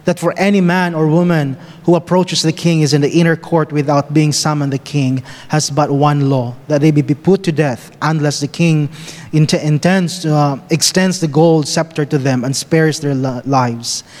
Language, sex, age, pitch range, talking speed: English, male, 20-39, 145-165 Hz, 200 wpm